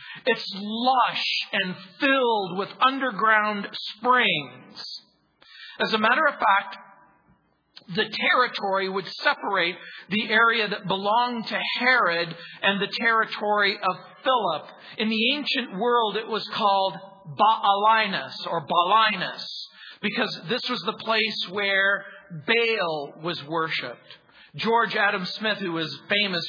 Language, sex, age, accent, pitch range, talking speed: English, male, 50-69, American, 190-230 Hz, 120 wpm